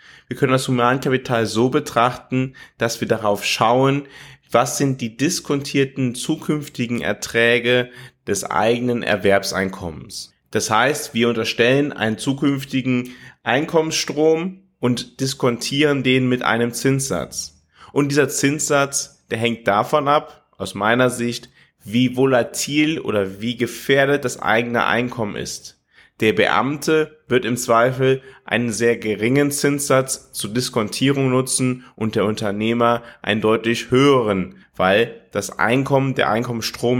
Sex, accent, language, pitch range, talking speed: male, German, German, 115-140 Hz, 120 wpm